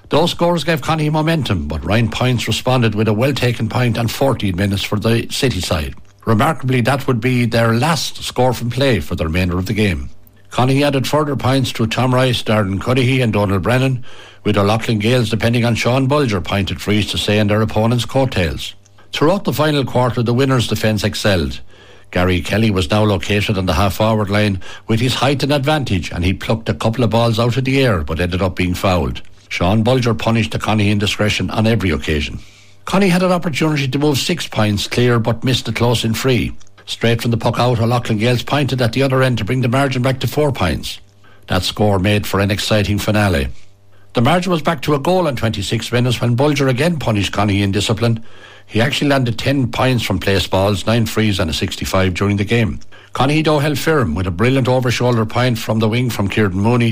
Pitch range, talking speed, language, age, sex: 100-130 Hz, 215 wpm, English, 60-79, male